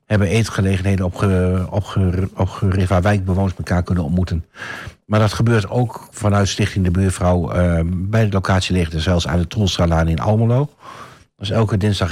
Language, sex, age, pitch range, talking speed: Dutch, male, 60-79, 90-115 Hz, 180 wpm